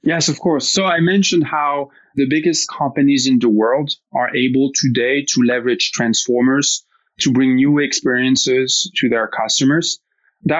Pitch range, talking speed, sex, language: 130-160 Hz, 155 wpm, male, English